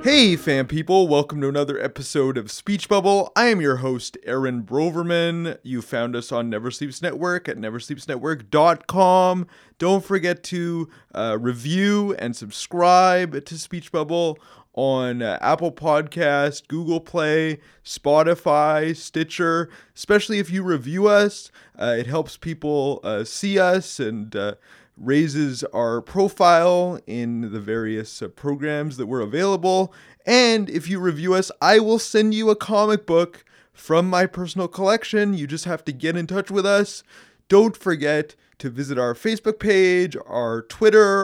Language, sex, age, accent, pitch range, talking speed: English, male, 30-49, American, 145-195 Hz, 150 wpm